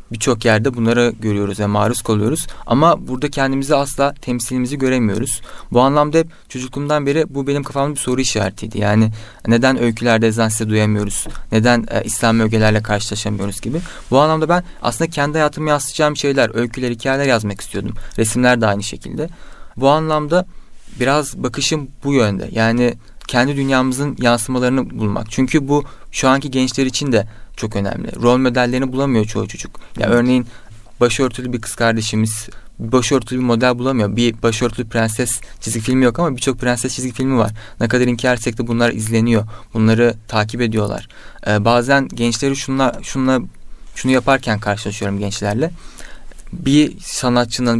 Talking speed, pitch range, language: 150 wpm, 110-135 Hz, Turkish